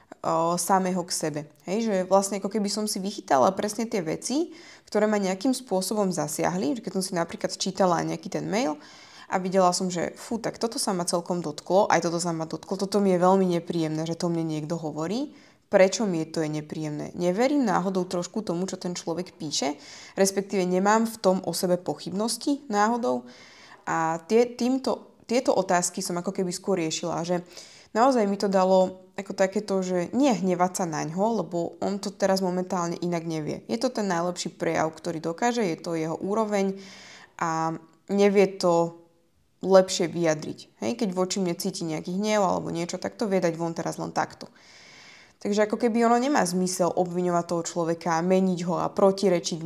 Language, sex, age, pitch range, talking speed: Slovak, female, 20-39, 170-205 Hz, 180 wpm